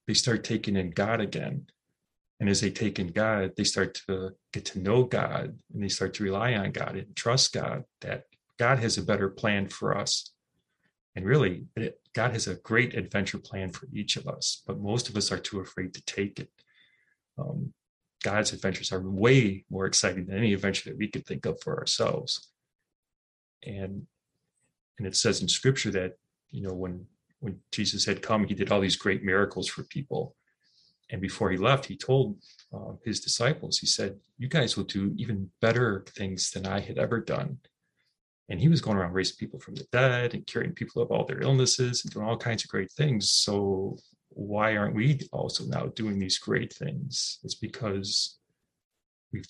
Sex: male